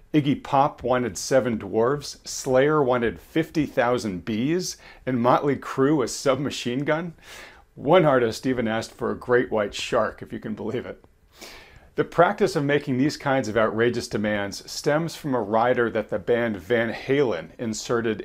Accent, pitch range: American, 110-145 Hz